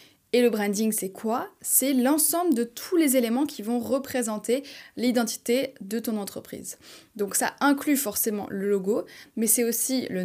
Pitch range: 205-265 Hz